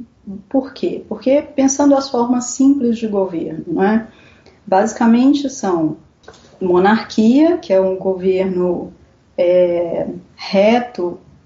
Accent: Brazilian